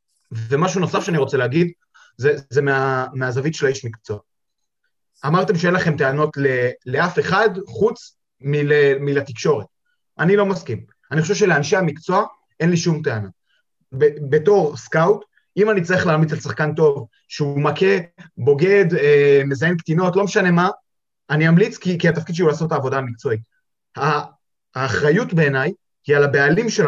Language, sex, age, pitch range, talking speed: Hebrew, male, 30-49, 145-185 Hz, 155 wpm